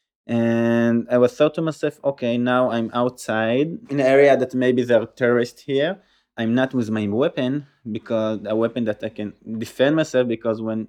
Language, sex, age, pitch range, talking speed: English, male, 20-39, 110-125 Hz, 185 wpm